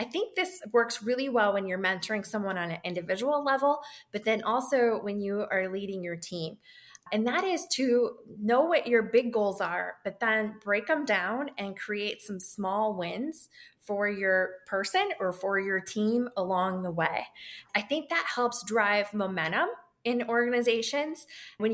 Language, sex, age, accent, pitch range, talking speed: English, female, 20-39, American, 190-245 Hz, 170 wpm